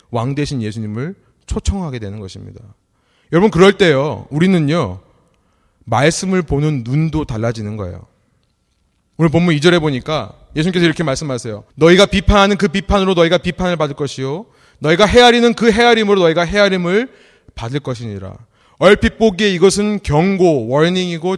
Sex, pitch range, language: male, 120-195 Hz, Korean